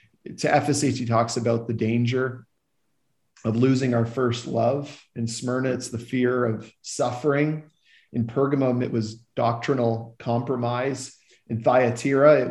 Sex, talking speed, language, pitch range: male, 135 wpm, English, 115-130 Hz